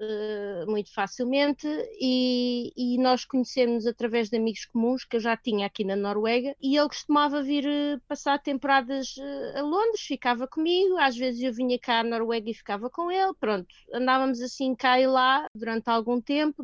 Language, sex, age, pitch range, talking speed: Portuguese, female, 20-39, 225-270 Hz, 170 wpm